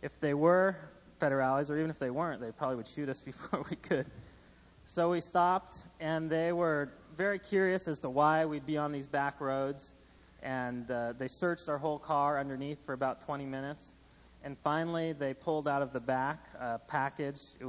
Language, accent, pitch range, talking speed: English, American, 130-165 Hz, 195 wpm